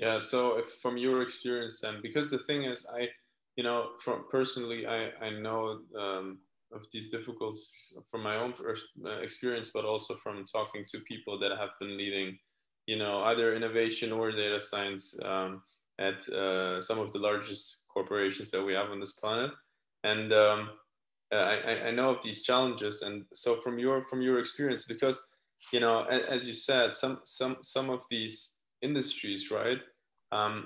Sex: male